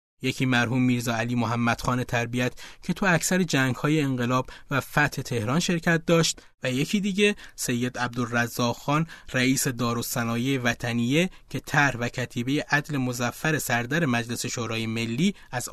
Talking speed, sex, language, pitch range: 140 wpm, male, Persian, 120-150 Hz